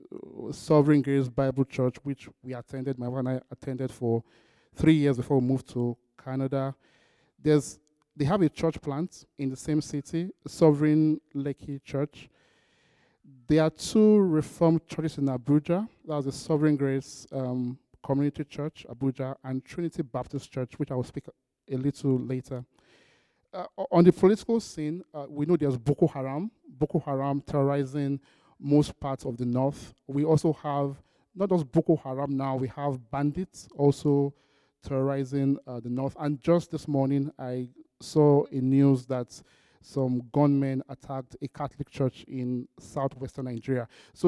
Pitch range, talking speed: 135-155 Hz, 155 wpm